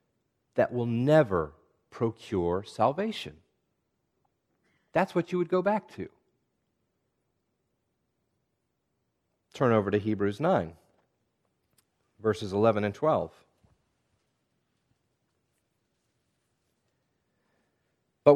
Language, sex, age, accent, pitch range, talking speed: English, male, 40-59, American, 105-145 Hz, 70 wpm